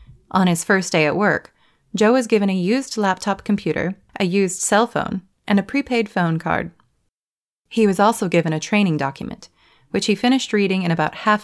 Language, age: English, 20-39